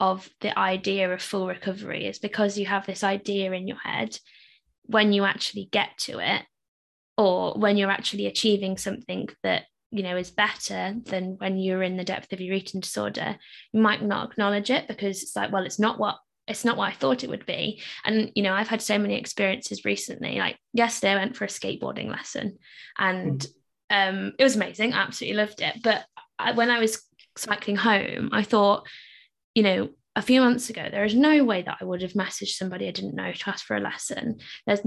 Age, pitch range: 20-39, 190-235 Hz